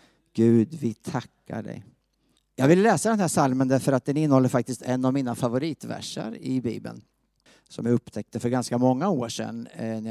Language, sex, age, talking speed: Swedish, male, 50-69, 185 wpm